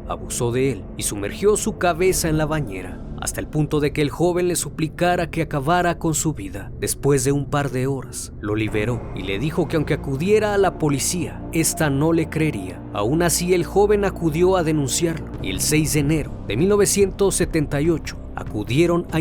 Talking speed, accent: 190 wpm, Mexican